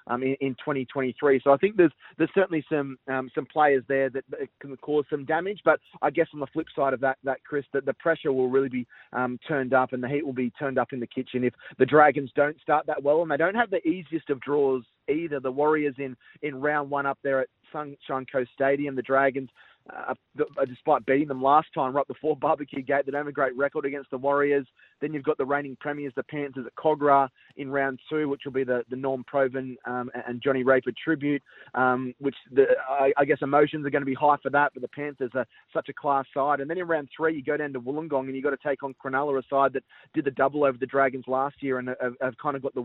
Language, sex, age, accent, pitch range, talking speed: English, male, 20-39, Australian, 130-145 Hz, 255 wpm